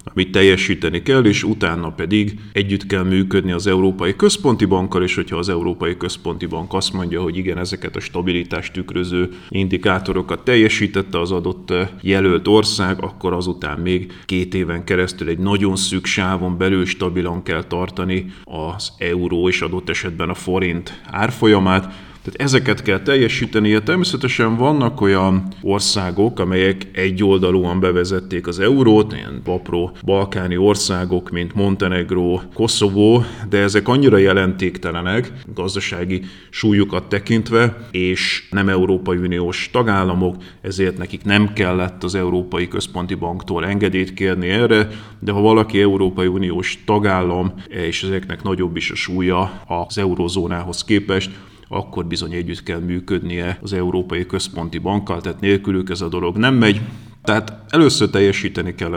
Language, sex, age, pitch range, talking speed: Hungarian, male, 30-49, 90-100 Hz, 135 wpm